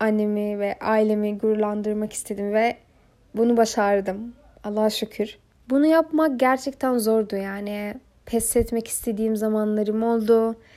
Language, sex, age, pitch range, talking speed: Turkish, female, 10-29, 210-240 Hz, 110 wpm